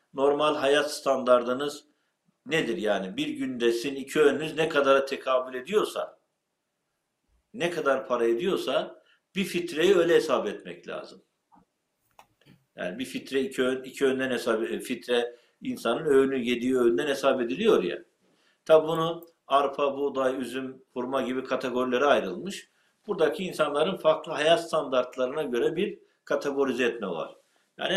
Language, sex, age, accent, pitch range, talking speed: Turkish, male, 60-79, native, 120-155 Hz, 125 wpm